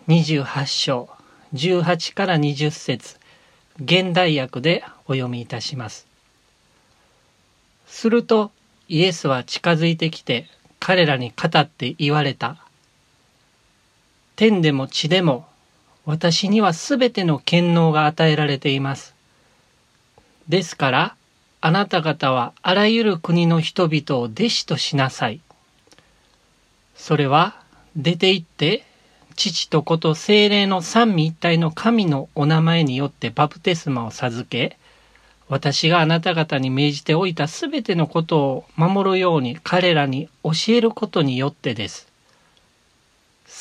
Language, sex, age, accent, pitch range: Japanese, male, 40-59, native, 140-180 Hz